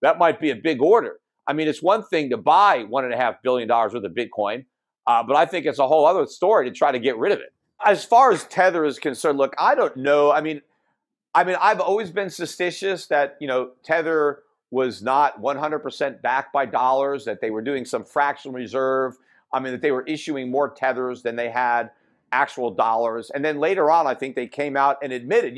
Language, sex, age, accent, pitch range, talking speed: English, male, 50-69, American, 130-175 Hz, 230 wpm